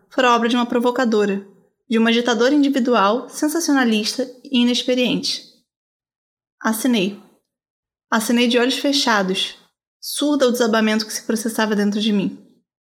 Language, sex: Portuguese, female